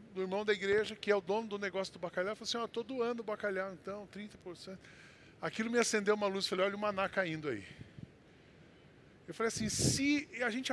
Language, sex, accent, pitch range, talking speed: Portuguese, male, Brazilian, 150-205 Hz, 220 wpm